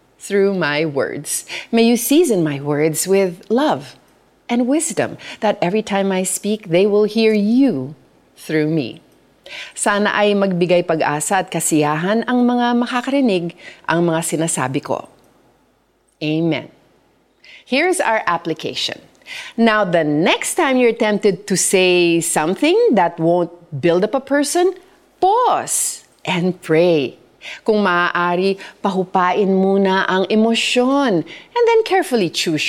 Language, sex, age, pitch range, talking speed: Filipino, female, 40-59, 165-255 Hz, 125 wpm